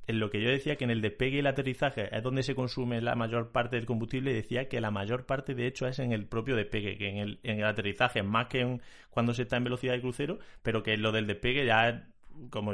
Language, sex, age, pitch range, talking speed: Spanish, male, 30-49, 110-130 Hz, 275 wpm